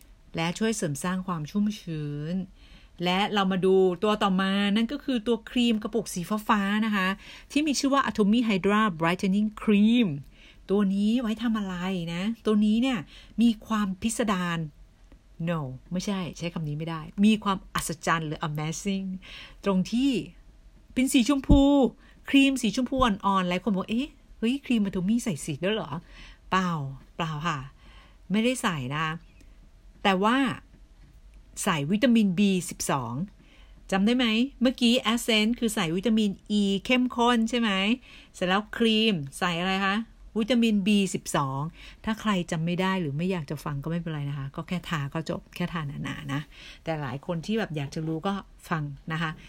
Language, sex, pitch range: Thai, female, 165-220 Hz